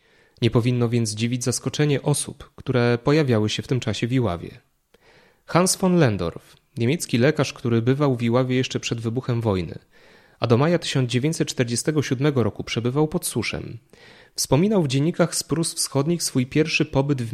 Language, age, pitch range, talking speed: Polish, 30-49, 120-150 Hz, 155 wpm